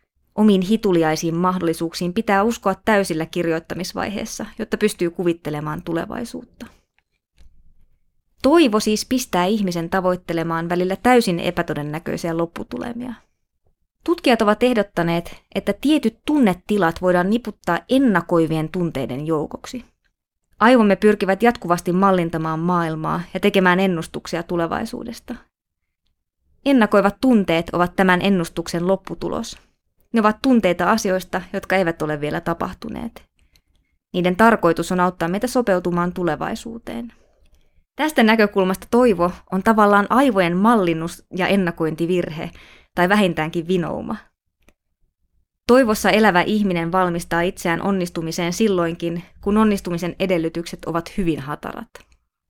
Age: 20-39